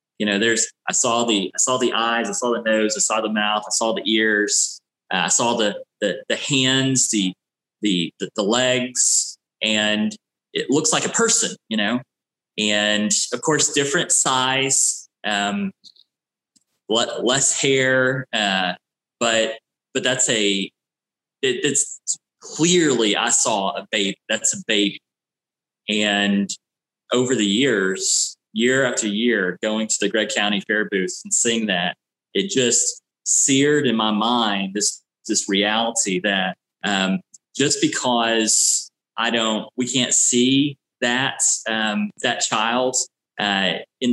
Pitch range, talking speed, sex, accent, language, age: 105-125 Hz, 140 wpm, male, American, English, 20-39